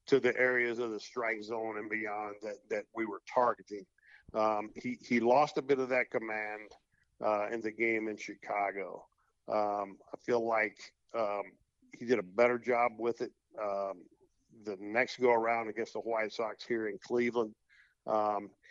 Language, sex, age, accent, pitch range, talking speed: English, male, 50-69, American, 110-120 Hz, 175 wpm